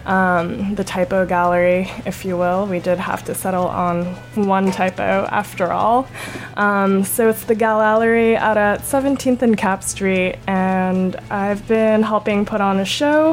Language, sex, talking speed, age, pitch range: English, female, 165 wpm, 20-39, 200-225 Hz